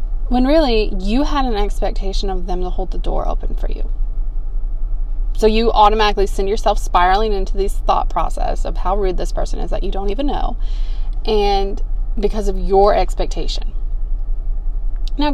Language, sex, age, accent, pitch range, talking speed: English, female, 20-39, American, 180-215 Hz, 165 wpm